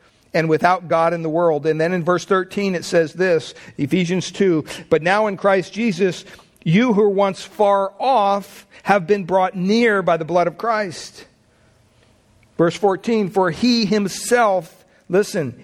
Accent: American